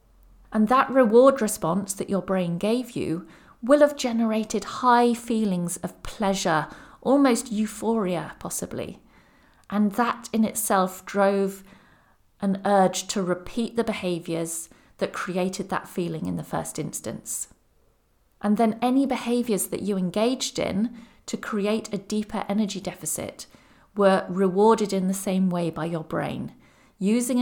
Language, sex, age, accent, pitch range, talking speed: English, female, 40-59, British, 180-220 Hz, 135 wpm